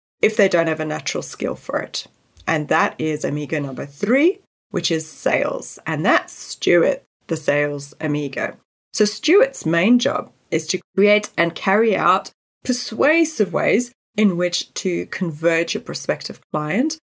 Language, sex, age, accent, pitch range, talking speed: English, female, 30-49, British, 160-255 Hz, 150 wpm